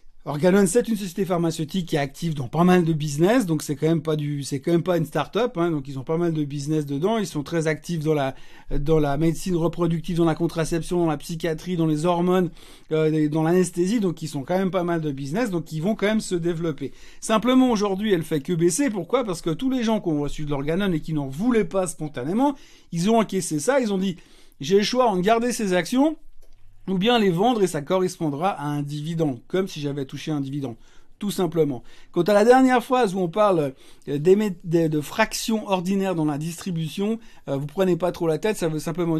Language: French